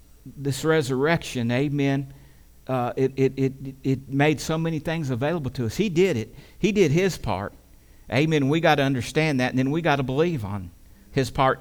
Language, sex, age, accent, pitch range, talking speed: English, male, 50-69, American, 130-180 Hz, 190 wpm